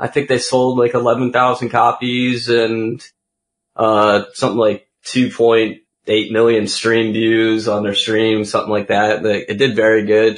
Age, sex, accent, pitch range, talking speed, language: 20-39, male, American, 105-120 Hz, 145 wpm, English